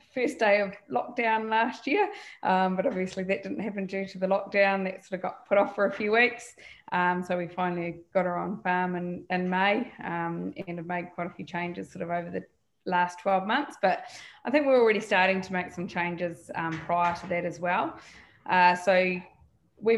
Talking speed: 215 wpm